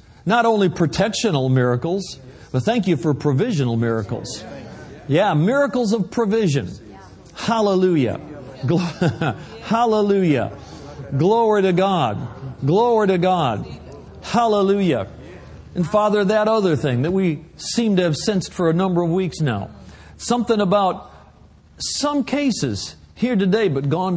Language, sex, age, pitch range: English, male, 50-69, 135-205 Hz